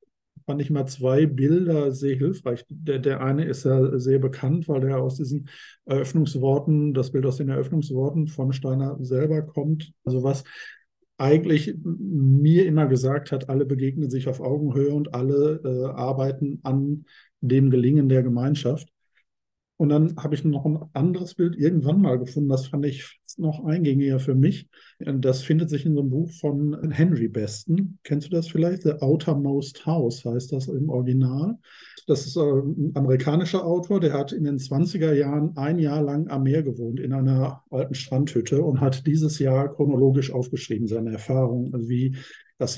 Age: 50-69